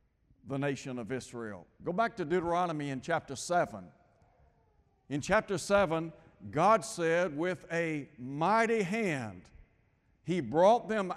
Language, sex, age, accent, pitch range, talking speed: English, male, 60-79, American, 130-180 Hz, 125 wpm